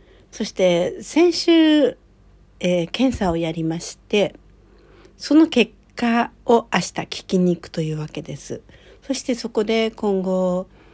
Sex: female